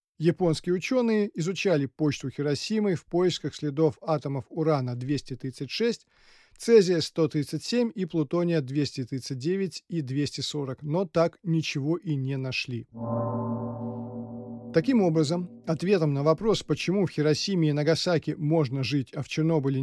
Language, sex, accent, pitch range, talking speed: Russian, male, native, 135-170 Hz, 110 wpm